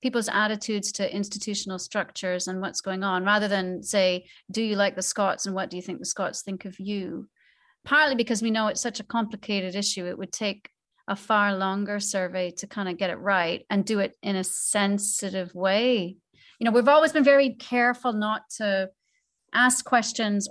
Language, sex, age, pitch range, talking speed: English, female, 40-59, 190-230 Hz, 195 wpm